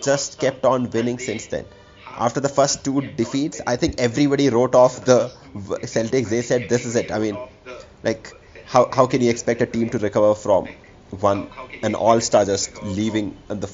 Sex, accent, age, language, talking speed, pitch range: male, Indian, 30-49, English, 190 wpm, 110-140 Hz